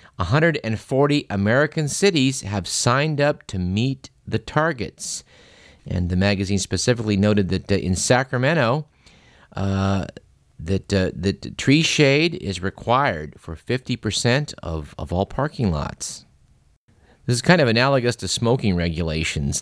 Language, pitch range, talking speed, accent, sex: English, 95-120 Hz, 125 wpm, American, male